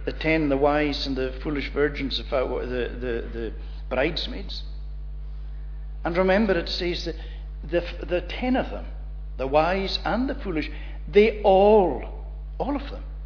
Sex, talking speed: male, 150 wpm